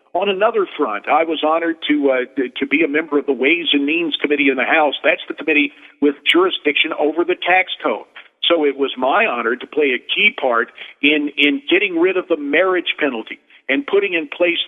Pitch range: 145-185 Hz